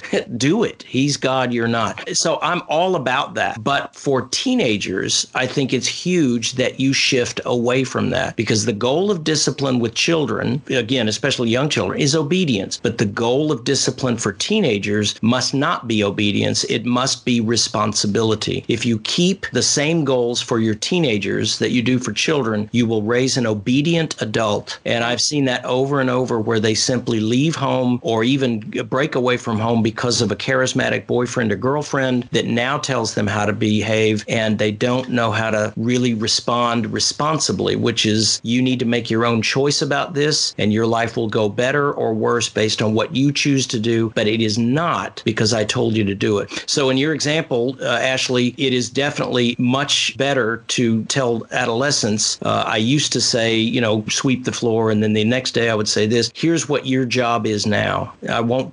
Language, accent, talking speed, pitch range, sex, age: English, American, 195 wpm, 110-130 Hz, male, 50-69